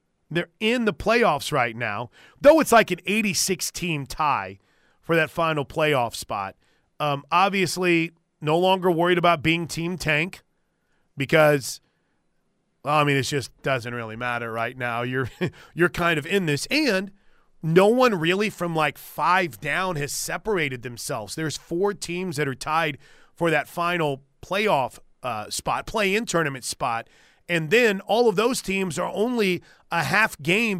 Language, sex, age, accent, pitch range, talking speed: English, male, 30-49, American, 150-200 Hz, 155 wpm